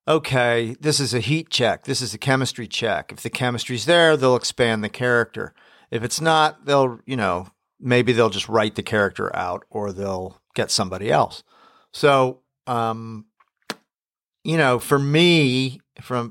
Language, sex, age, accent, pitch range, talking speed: English, male, 50-69, American, 110-130 Hz, 160 wpm